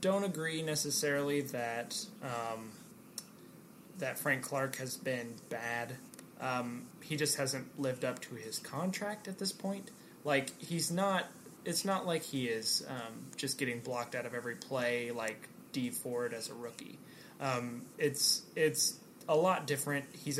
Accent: American